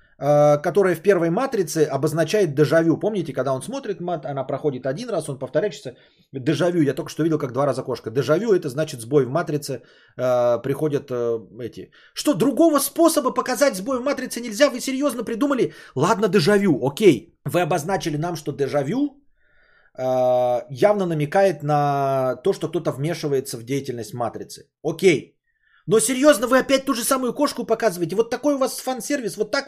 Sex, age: male, 30-49